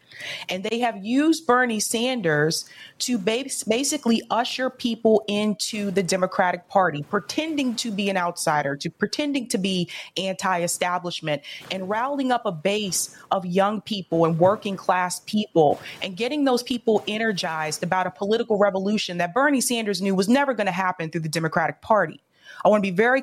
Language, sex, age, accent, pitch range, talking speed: English, female, 30-49, American, 185-240 Hz, 165 wpm